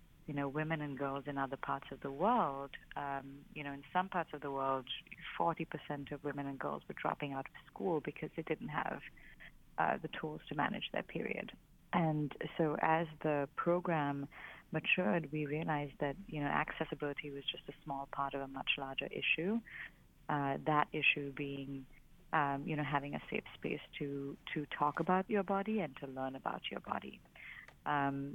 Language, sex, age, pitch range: English, female, 30-49, 135-155 Hz